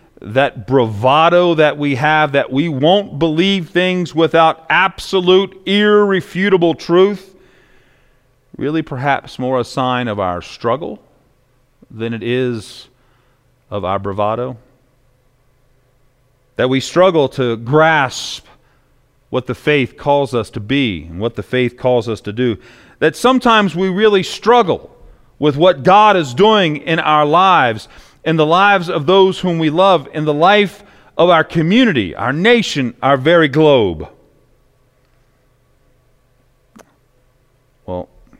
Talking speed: 125 wpm